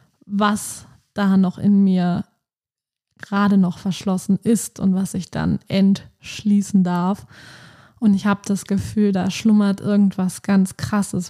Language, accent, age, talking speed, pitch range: German, German, 20-39, 135 wpm, 190-205 Hz